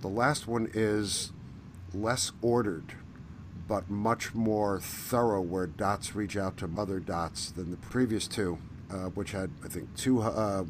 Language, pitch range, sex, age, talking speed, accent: English, 95-115 Hz, male, 50-69, 155 wpm, American